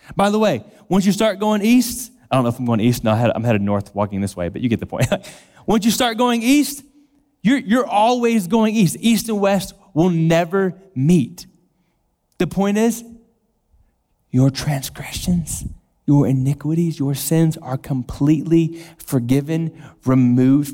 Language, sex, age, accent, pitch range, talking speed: English, male, 30-49, American, 125-185 Hz, 160 wpm